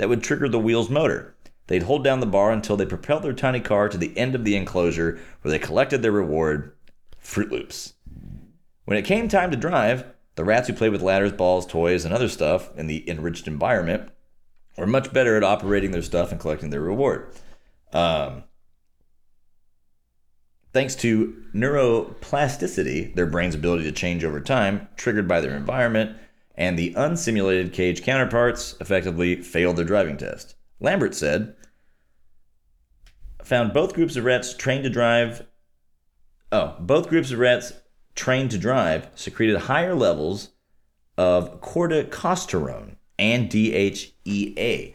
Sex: male